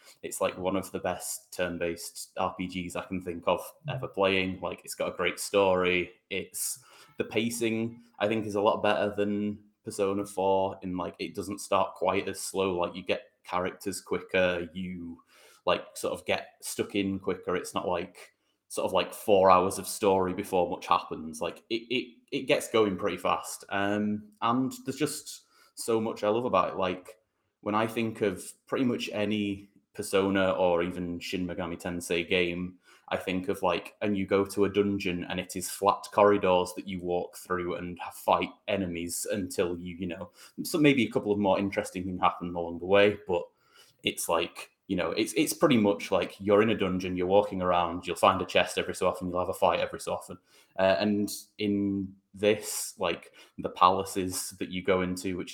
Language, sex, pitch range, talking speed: English, male, 90-105 Hz, 195 wpm